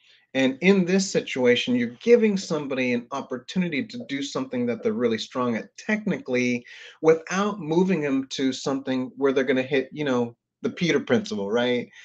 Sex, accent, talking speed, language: male, American, 170 wpm, English